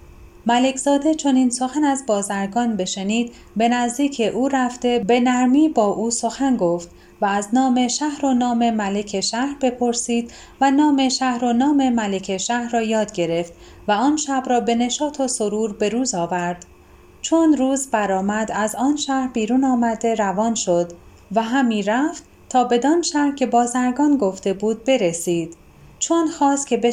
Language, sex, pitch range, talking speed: Persian, female, 210-270 Hz, 165 wpm